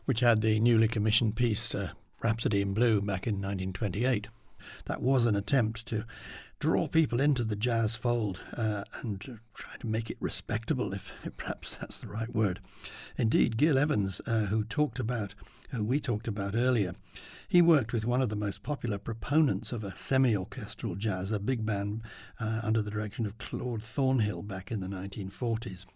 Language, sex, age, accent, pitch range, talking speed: English, male, 60-79, British, 105-125 Hz, 175 wpm